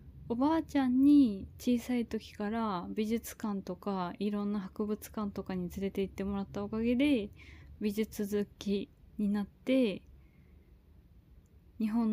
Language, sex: Japanese, female